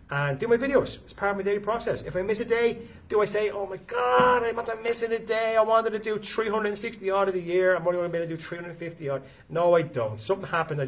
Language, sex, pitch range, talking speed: English, male, 130-185 Hz, 280 wpm